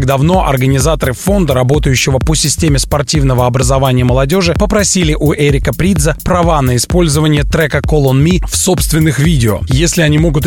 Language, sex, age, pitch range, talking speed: Russian, male, 20-39, 135-170 Hz, 145 wpm